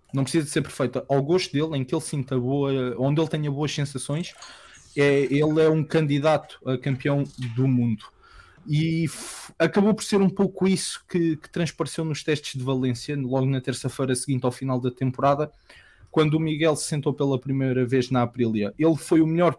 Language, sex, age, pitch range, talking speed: English, male, 20-39, 135-165 Hz, 195 wpm